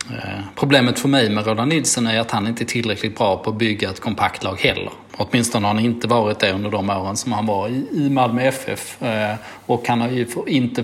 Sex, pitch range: male, 105-130 Hz